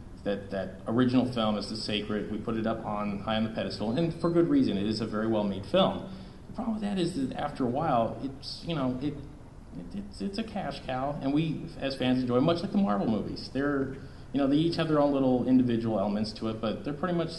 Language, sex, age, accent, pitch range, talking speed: English, male, 30-49, American, 105-130 Hz, 250 wpm